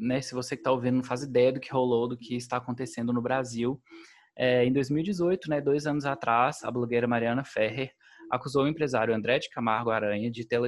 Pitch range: 115-140 Hz